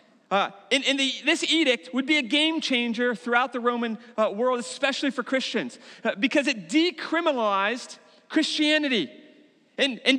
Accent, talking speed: American, 145 wpm